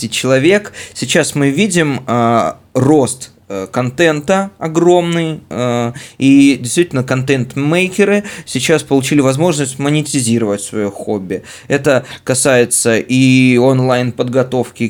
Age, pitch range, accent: 20-39, 115-140 Hz, native